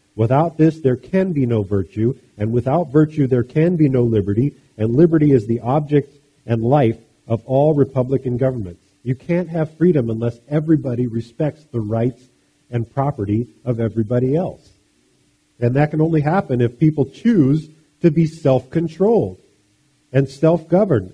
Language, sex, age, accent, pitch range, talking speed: English, male, 50-69, American, 115-150 Hz, 150 wpm